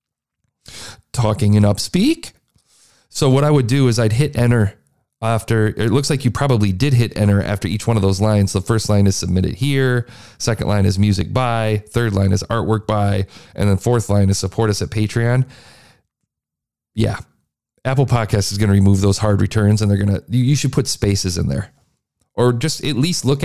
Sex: male